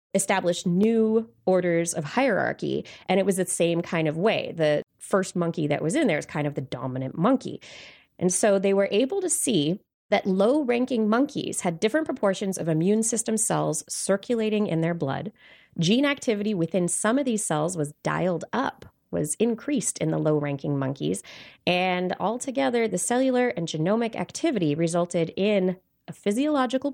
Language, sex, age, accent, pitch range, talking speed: English, female, 20-39, American, 150-205 Hz, 165 wpm